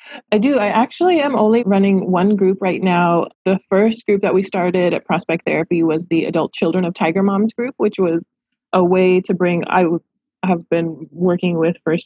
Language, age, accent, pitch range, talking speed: English, 20-39, American, 170-210 Hz, 200 wpm